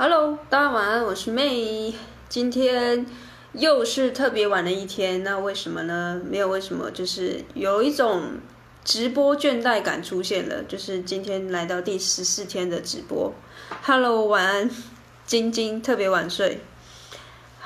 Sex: female